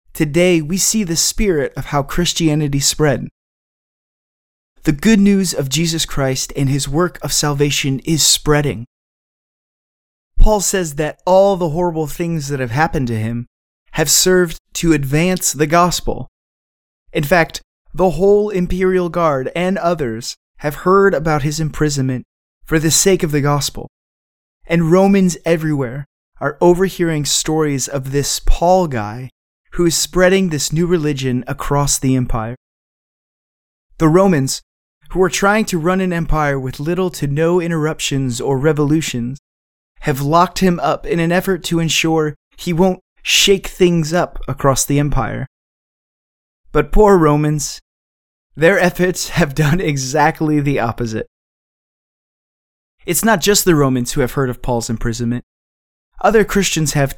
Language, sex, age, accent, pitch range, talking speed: English, male, 20-39, American, 135-175 Hz, 140 wpm